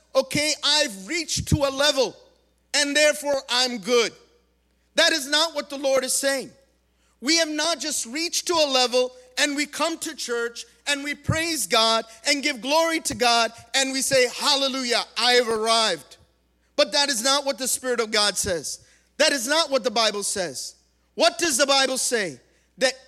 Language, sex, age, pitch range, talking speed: English, male, 50-69, 230-295 Hz, 180 wpm